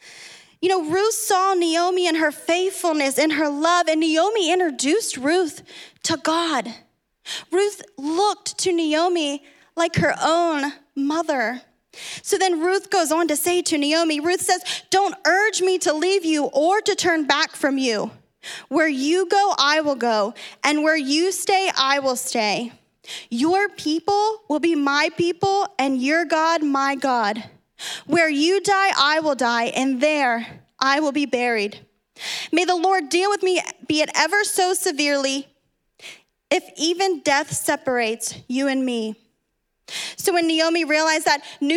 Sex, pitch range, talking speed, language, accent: female, 280-355 Hz, 155 wpm, English, American